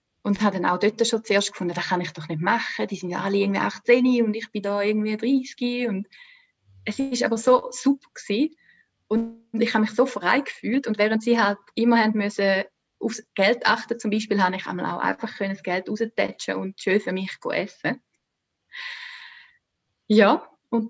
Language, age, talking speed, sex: English, 20-39, 195 wpm, female